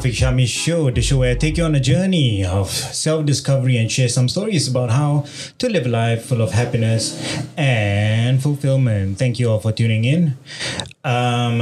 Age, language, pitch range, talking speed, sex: 20-39, English, 100-135 Hz, 180 wpm, male